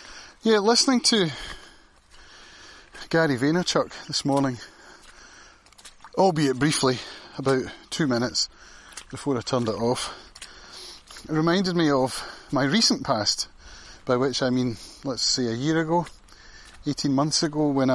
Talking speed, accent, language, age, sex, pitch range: 125 wpm, British, English, 30-49, male, 125-170 Hz